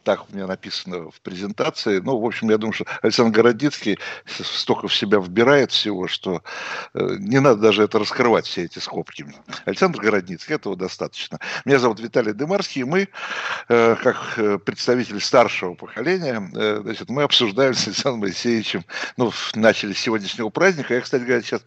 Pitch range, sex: 95-120 Hz, male